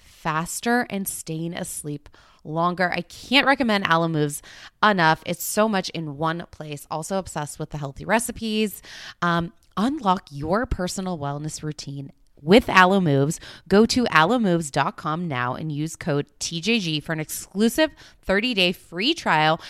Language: English